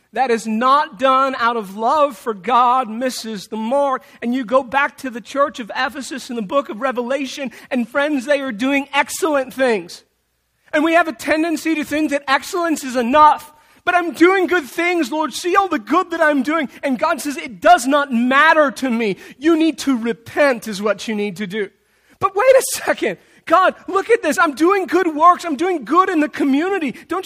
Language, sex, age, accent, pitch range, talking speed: English, male, 40-59, American, 230-325 Hz, 210 wpm